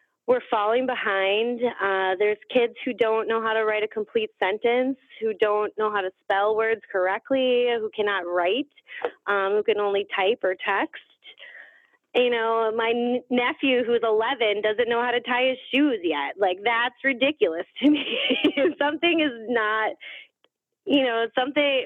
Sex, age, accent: female, 20-39, American